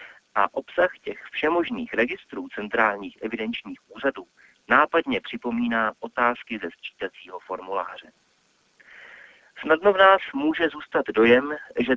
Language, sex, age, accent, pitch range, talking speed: Czech, male, 30-49, native, 105-155 Hz, 105 wpm